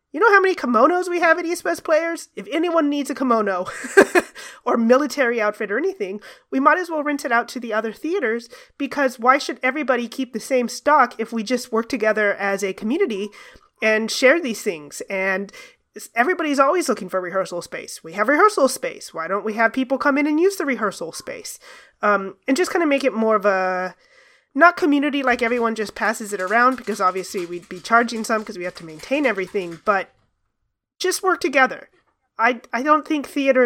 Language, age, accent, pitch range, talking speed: English, 30-49, American, 205-285 Hz, 205 wpm